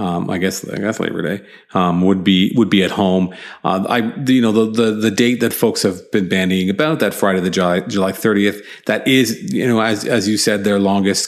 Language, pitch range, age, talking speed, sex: English, 95-105 Hz, 40-59, 235 wpm, male